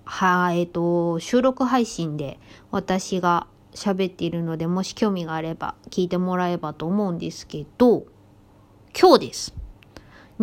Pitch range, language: 170-245 Hz, Japanese